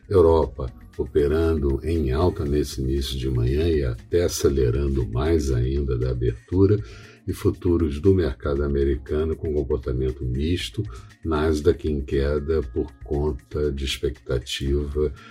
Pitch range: 65-85 Hz